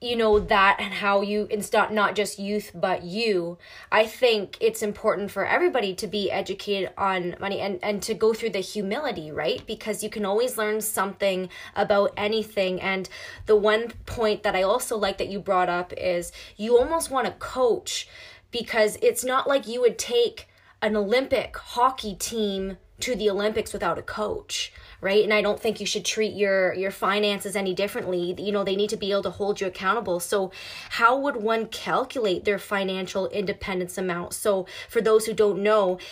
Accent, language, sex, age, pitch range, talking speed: American, English, female, 20-39, 195-215 Hz, 190 wpm